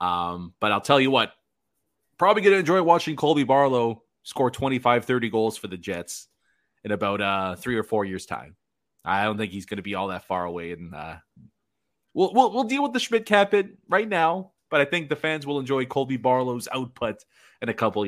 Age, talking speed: 30-49, 215 wpm